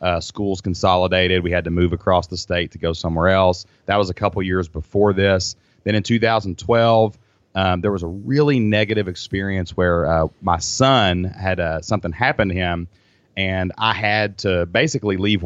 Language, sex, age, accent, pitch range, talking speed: English, male, 30-49, American, 90-110 Hz, 185 wpm